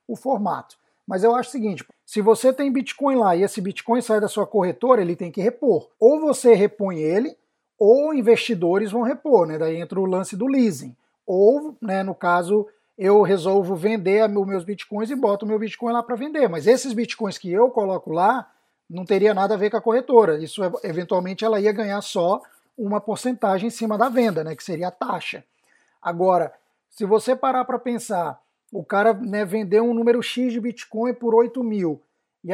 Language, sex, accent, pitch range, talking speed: Portuguese, male, Brazilian, 190-240 Hz, 200 wpm